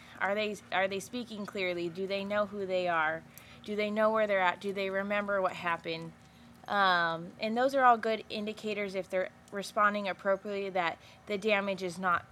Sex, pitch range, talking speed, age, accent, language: female, 170-195 Hz, 190 wpm, 20-39, American, English